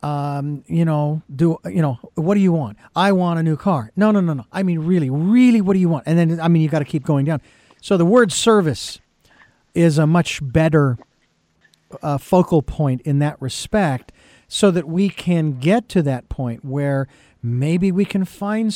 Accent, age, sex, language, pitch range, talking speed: American, 50-69, male, English, 150-195 Hz, 205 wpm